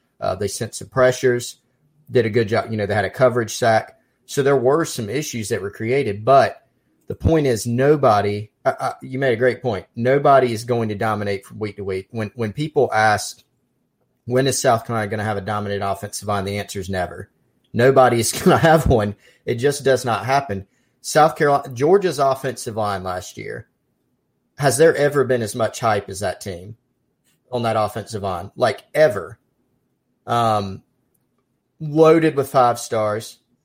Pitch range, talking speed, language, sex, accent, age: 105-135 Hz, 185 wpm, English, male, American, 30-49